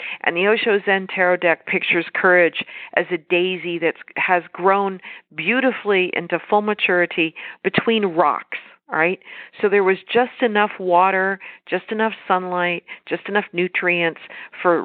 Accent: American